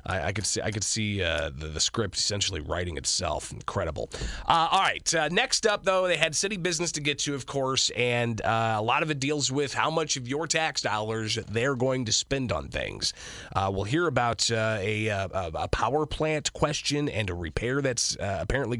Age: 30-49